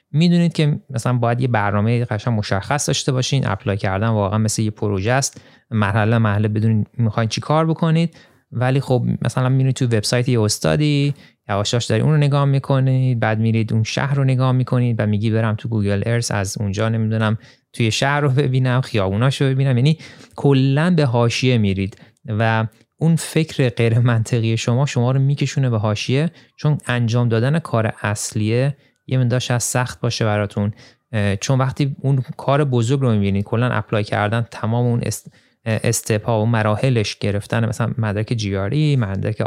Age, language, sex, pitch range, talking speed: 30-49, Persian, male, 110-135 Hz, 165 wpm